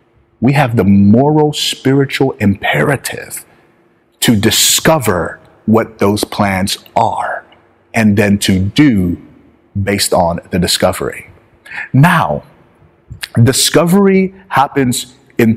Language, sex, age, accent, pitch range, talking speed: English, male, 30-49, American, 115-145 Hz, 95 wpm